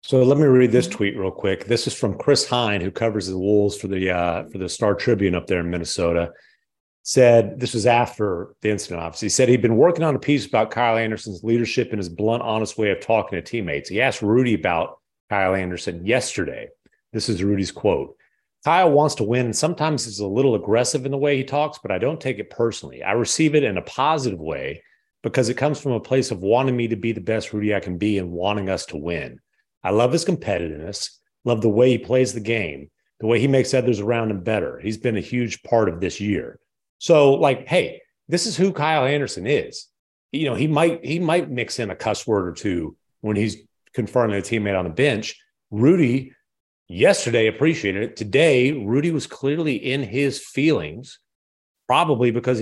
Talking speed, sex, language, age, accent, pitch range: 210 wpm, male, English, 40-59, American, 105-140 Hz